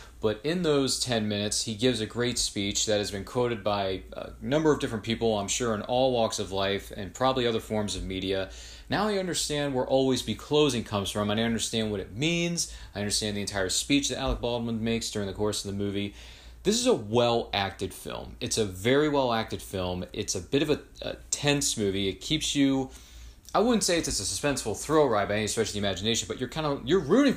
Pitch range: 100-135 Hz